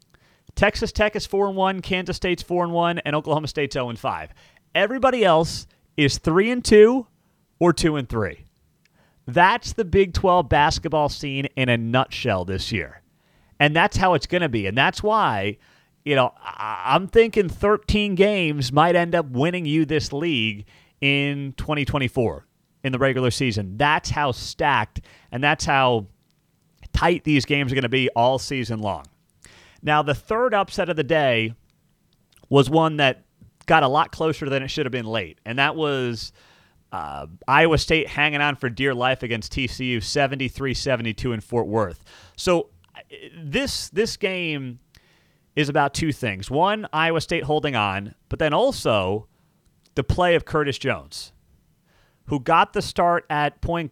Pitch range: 120-165 Hz